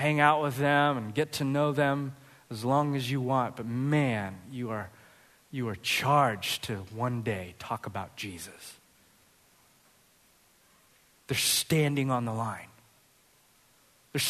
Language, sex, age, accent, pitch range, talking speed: English, male, 20-39, American, 135-200 Hz, 140 wpm